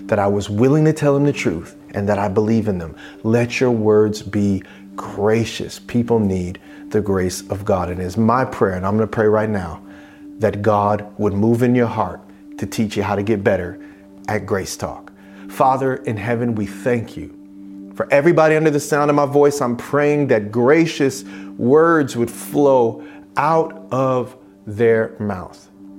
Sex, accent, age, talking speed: male, American, 40-59, 180 wpm